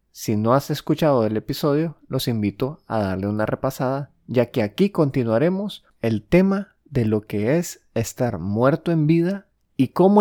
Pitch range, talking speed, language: 105-130 Hz, 165 wpm, Spanish